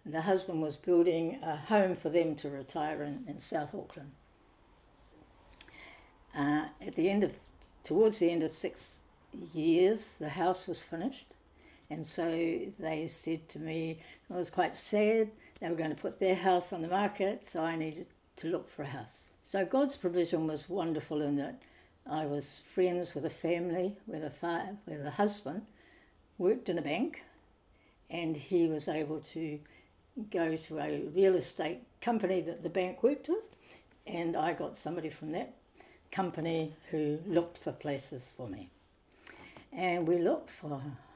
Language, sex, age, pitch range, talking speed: English, female, 60-79, 150-190 Hz, 165 wpm